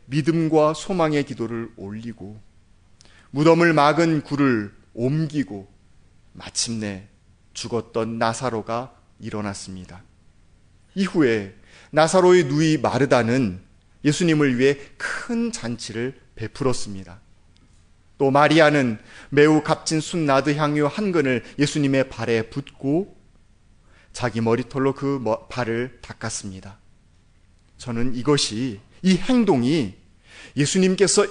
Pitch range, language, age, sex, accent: 105-175 Hz, Korean, 30-49, male, native